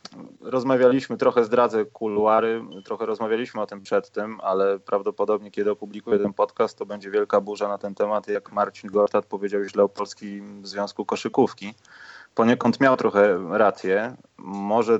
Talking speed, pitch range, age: 150 wpm, 100-130 Hz, 20-39